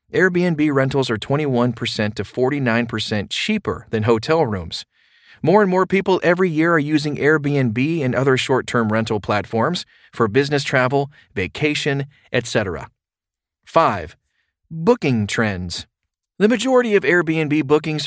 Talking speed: 125 wpm